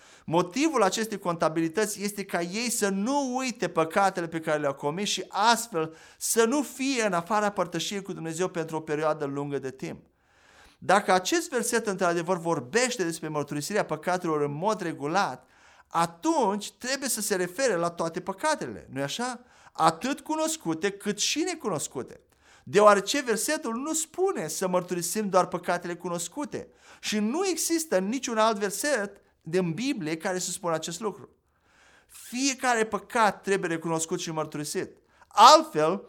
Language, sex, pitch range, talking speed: Romanian, male, 170-230 Hz, 140 wpm